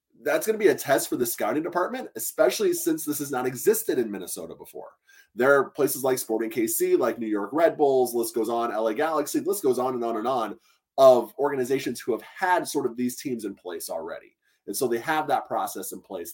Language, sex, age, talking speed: English, male, 20-39, 230 wpm